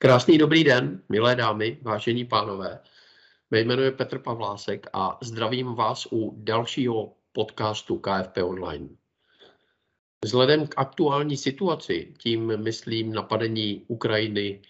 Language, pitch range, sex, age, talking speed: Czech, 110-135 Hz, male, 50-69, 105 wpm